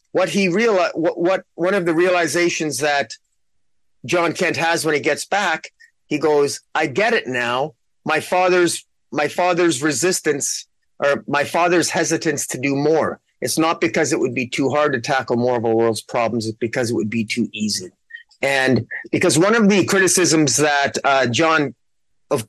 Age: 30-49